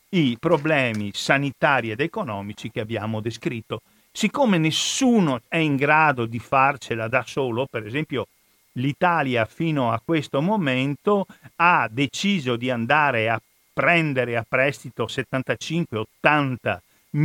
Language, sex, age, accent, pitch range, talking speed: Italian, male, 50-69, native, 125-170 Hz, 115 wpm